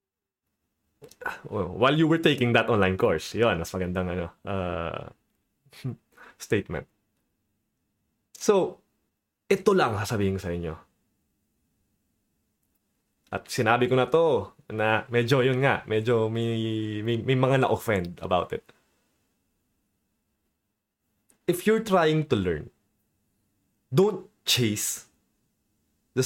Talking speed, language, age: 100 wpm, Filipino, 20-39